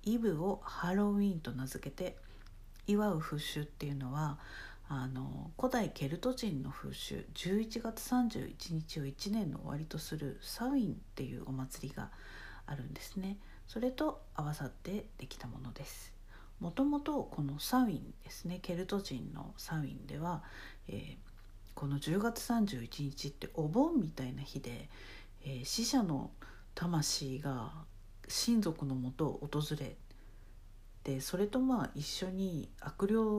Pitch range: 135-200 Hz